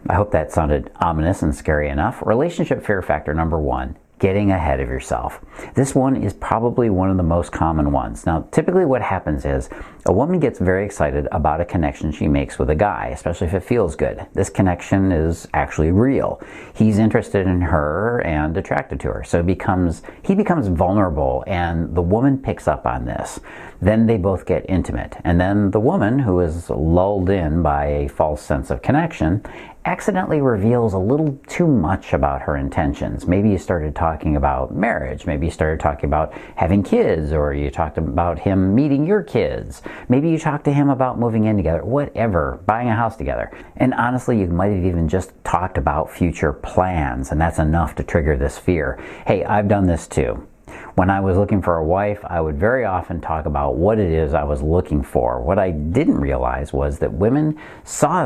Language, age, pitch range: English, 50-69, 75-100 Hz